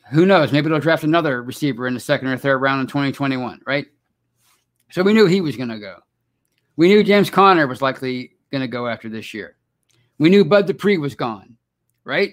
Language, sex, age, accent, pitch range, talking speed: English, male, 50-69, American, 130-165 Hz, 200 wpm